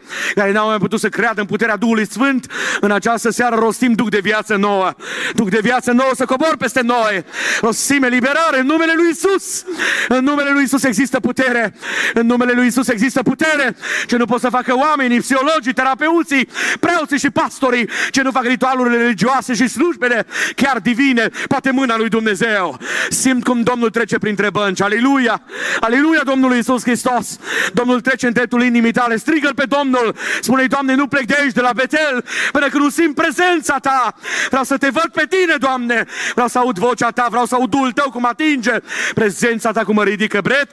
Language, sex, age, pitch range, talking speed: Romanian, male, 40-59, 230-275 Hz, 185 wpm